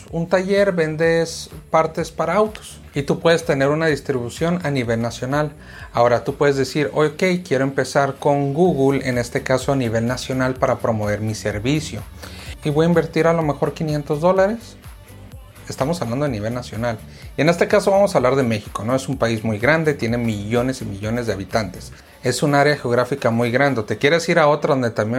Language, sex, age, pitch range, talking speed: Spanish, male, 30-49, 120-155 Hz, 195 wpm